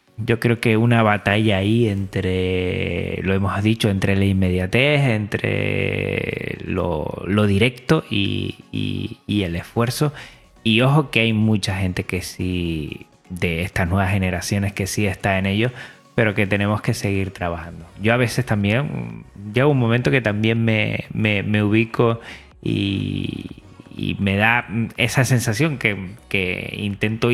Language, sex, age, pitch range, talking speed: Spanish, male, 20-39, 95-115 Hz, 145 wpm